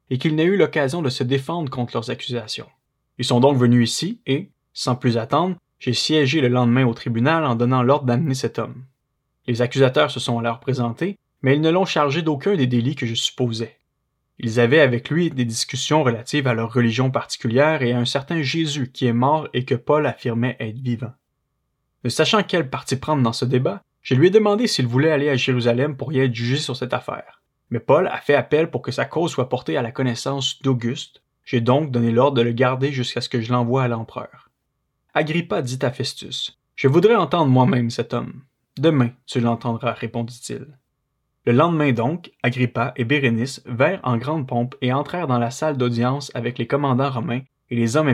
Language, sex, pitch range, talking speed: French, male, 120-145 Hz, 205 wpm